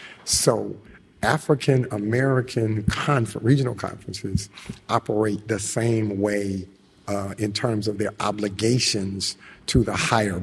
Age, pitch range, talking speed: 50-69, 105-130 Hz, 100 wpm